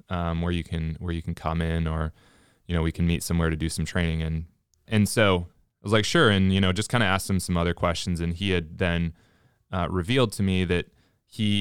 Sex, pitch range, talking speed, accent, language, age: male, 85-100 Hz, 250 wpm, American, English, 20-39